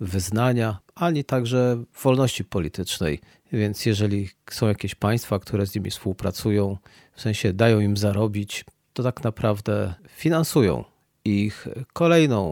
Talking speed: 120 wpm